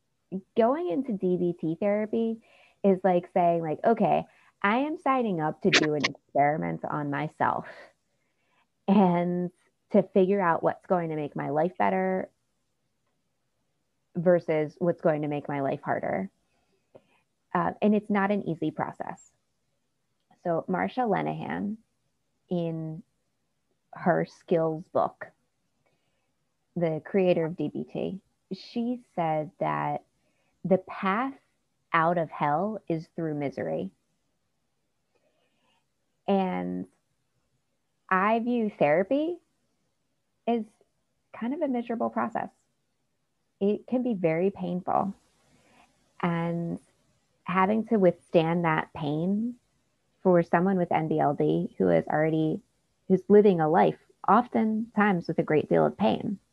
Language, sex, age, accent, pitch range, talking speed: English, female, 20-39, American, 160-210 Hz, 115 wpm